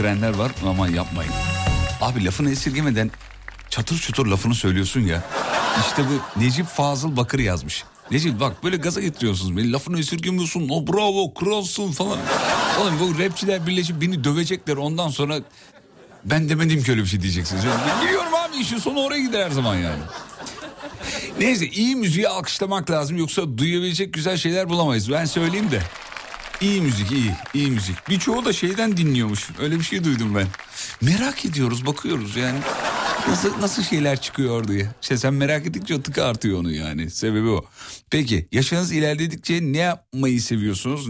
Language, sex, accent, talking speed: Turkish, male, native, 155 wpm